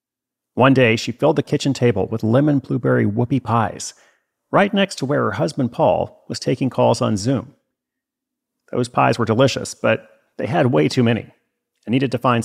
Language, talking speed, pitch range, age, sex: English, 185 wpm, 110-145 Hz, 40-59, male